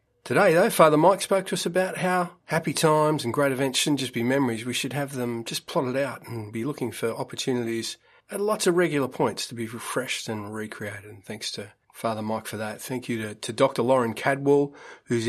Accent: Australian